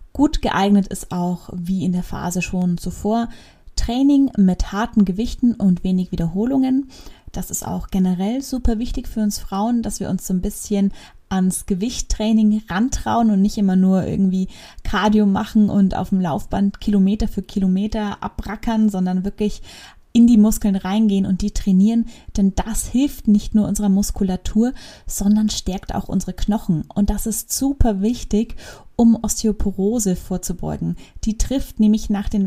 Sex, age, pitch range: female, 20-39, 190-220 Hz